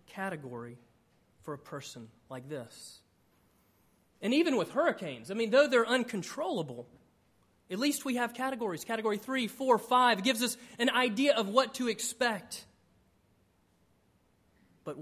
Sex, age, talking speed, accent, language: male, 30-49, 130 wpm, American, English